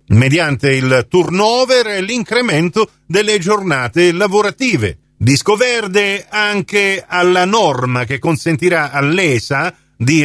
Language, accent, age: Italian, native, 50-69